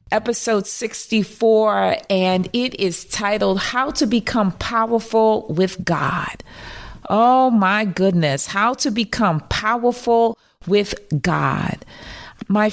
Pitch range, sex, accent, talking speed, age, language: 190-230 Hz, female, American, 105 wpm, 40-59, English